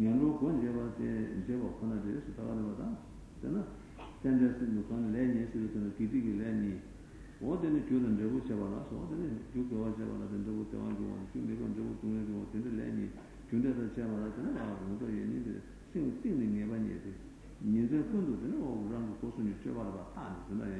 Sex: male